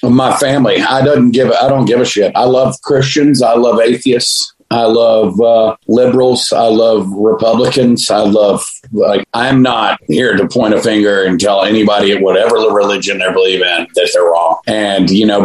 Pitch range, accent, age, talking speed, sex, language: 105-130 Hz, American, 40-59, 195 wpm, male, English